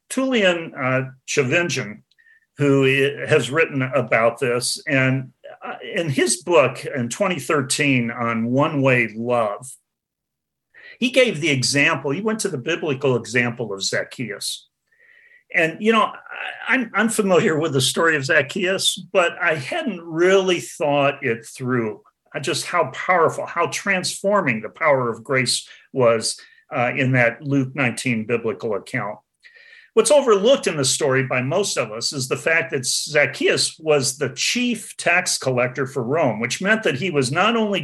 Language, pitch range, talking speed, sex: English, 125-185 Hz, 145 wpm, male